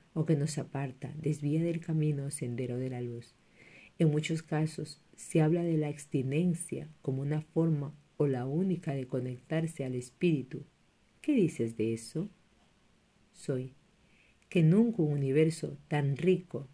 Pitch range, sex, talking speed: 135-165 Hz, female, 145 wpm